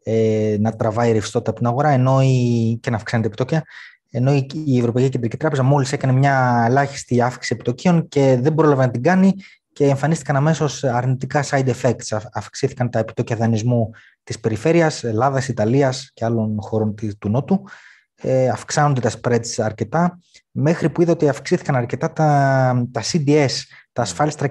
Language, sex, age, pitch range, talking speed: Greek, male, 20-39, 115-150 Hz, 150 wpm